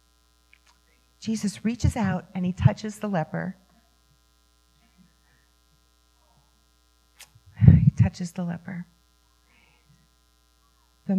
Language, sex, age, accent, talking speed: English, female, 40-59, American, 70 wpm